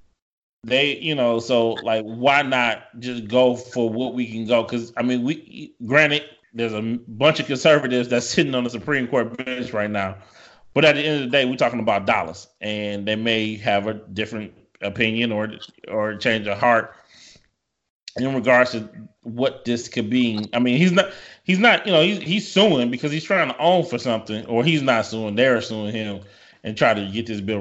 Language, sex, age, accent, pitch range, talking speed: English, male, 20-39, American, 105-125 Hz, 205 wpm